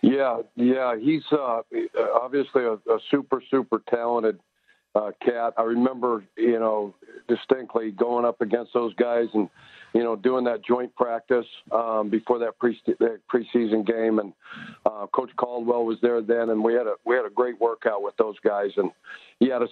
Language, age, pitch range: English, 50-69, 115-140 Hz